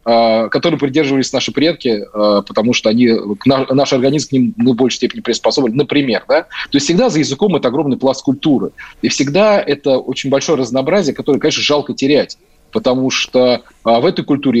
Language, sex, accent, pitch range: Russian, male, native, 120-150 Hz